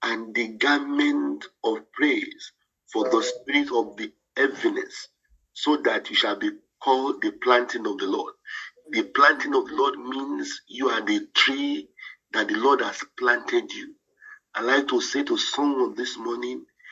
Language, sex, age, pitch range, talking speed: English, male, 50-69, 290-405 Hz, 165 wpm